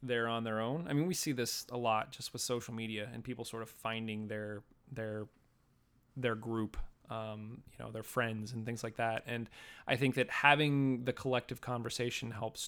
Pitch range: 115-135 Hz